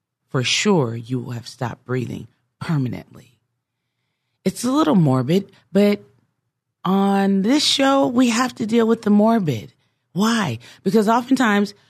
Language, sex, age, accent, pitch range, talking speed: English, female, 40-59, American, 135-210 Hz, 130 wpm